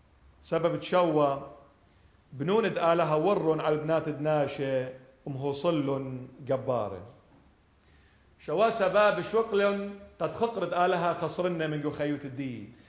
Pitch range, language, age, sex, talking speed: 150-225 Hz, English, 40-59, male, 100 wpm